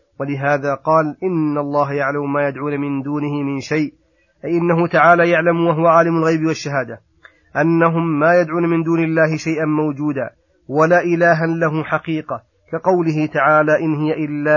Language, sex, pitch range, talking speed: Arabic, male, 145-160 Hz, 150 wpm